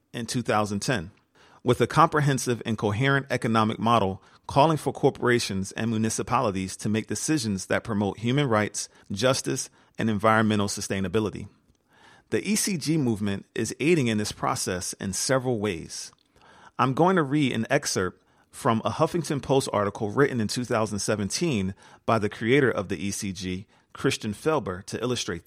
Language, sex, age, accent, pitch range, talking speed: English, male, 40-59, American, 100-130 Hz, 140 wpm